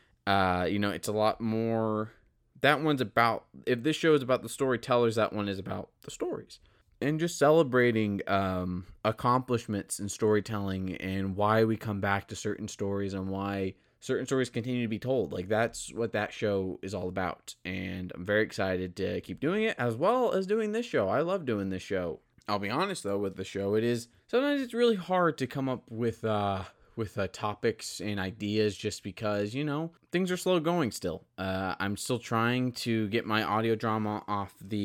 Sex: male